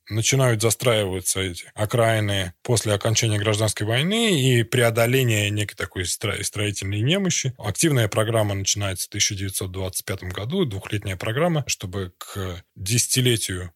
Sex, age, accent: male, 20-39, native